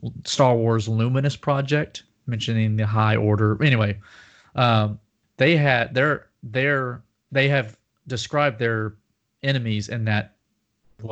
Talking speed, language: 120 wpm, English